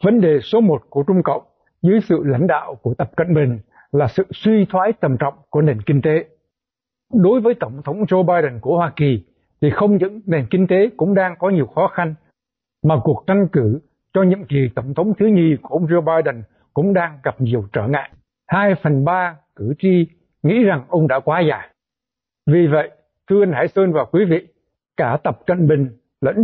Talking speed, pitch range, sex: 210 wpm, 145-190 Hz, male